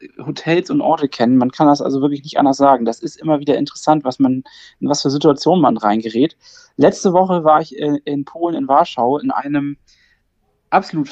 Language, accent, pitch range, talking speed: German, German, 130-155 Hz, 195 wpm